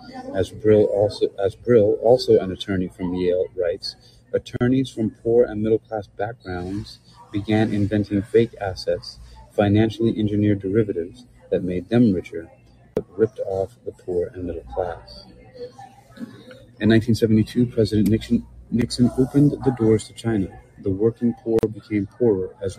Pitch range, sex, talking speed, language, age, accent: 100-120 Hz, male, 145 wpm, English, 30-49, American